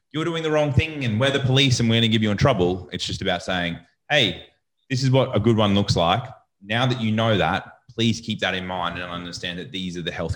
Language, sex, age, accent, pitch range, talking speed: English, male, 20-39, Australian, 90-110 Hz, 270 wpm